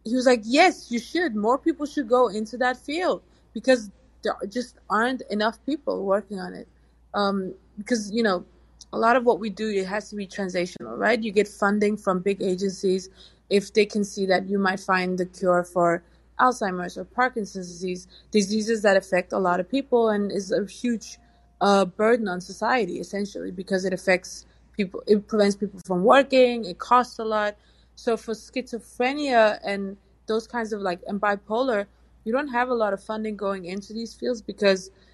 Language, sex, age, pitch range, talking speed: English, female, 20-39, 185-220 Hz, 190 wpm